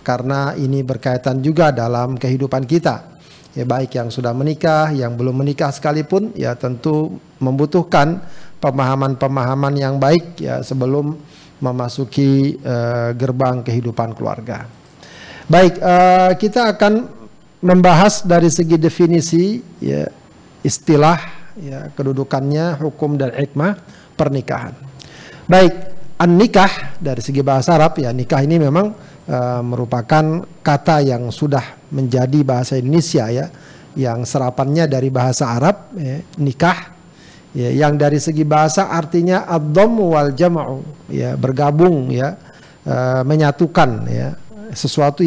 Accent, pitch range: native, 135-170 Hz